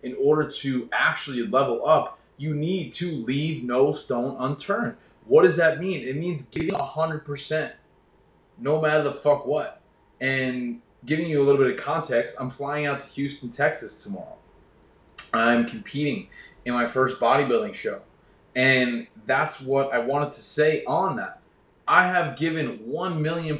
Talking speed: 160 wpm